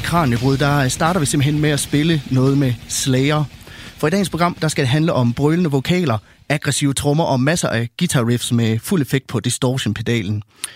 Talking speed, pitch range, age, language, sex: 185 wpm, 120-150 Hz, 30-49, Danish, male